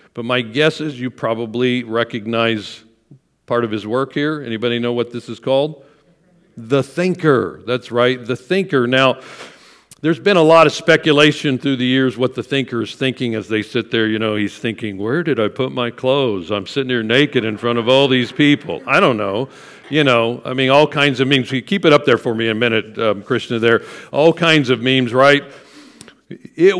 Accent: American